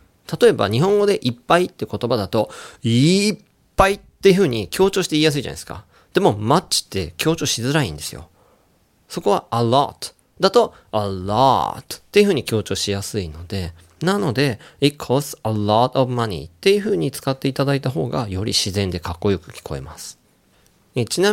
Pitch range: 100-165 Hz